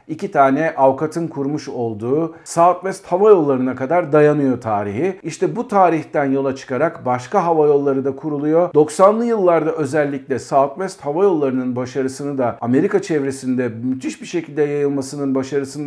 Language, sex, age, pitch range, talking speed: Turkish, male, 50-69, 130-175 Hz, 135 wpm